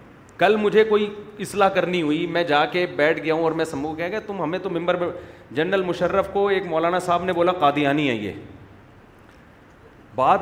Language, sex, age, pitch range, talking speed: Urdu, male, 30-49, 145-185 Hz, 190 wpm